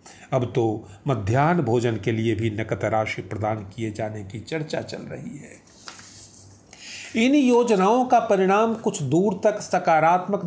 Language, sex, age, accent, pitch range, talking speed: Hindi, male, 40-59, native, 130-185 Hz, 145 wpm